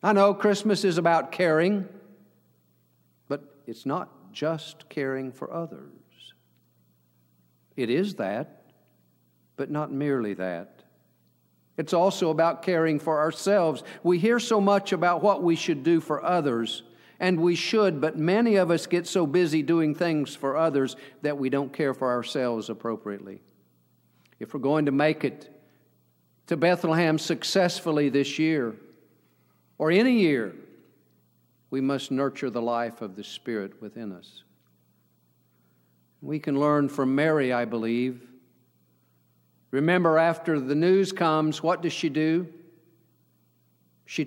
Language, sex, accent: English, male, American